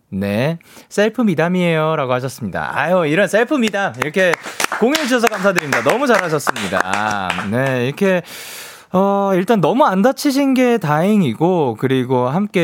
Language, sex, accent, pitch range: Korean, male, native, 135-200 Hz